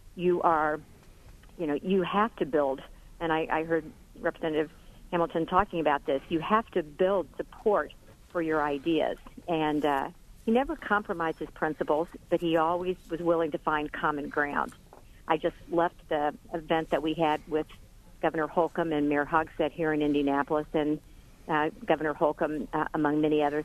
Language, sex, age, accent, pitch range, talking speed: English, female, 50-69, American, 150-175 Hz, 165 wpm